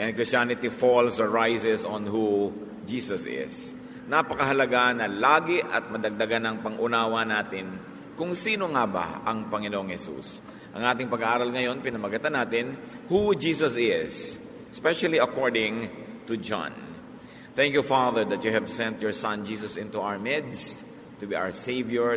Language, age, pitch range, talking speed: English, 50-69, 110-130 Hz, 145 wpm